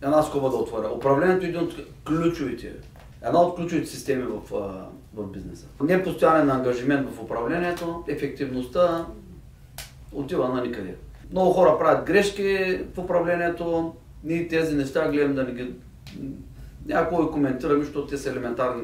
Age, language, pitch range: 40-59, Bulgarian, 145-185 Hz